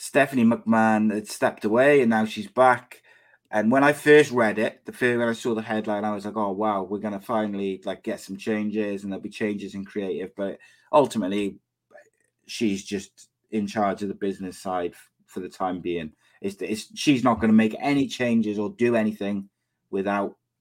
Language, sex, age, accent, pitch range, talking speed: English, male, 20-39, British, 100-115 Hz, 195 wpm